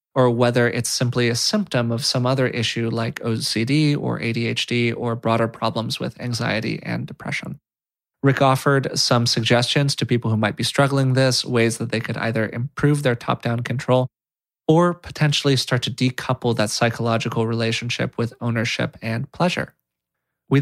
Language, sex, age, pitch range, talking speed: English, male, 20-39, 115-145 Hz, 155 wpm